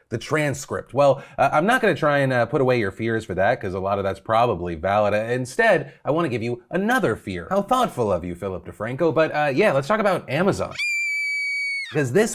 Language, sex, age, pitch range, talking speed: English, male, 30-49, 115-165 Hz, 225 wpm